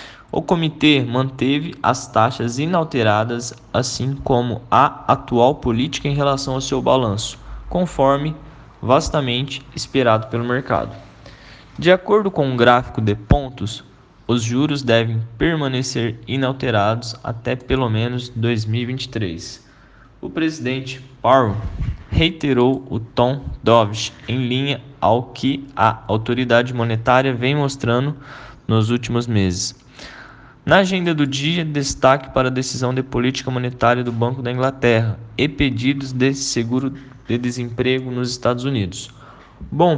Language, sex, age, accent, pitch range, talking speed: Portuguese, male, 10-29, Brazilian, 115-135 Hz, 120 wpm